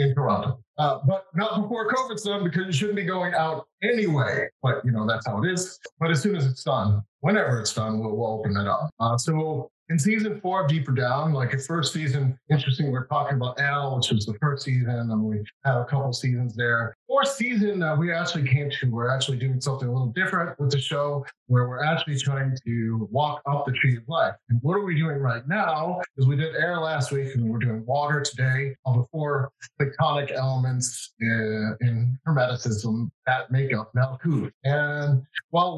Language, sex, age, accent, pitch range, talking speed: English, male, 30-49, American, 125-160 Hz, 210 wpm